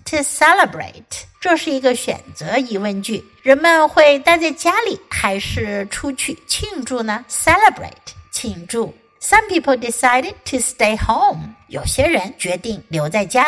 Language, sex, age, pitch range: Chinese, female, 60-79, 210-305 Hz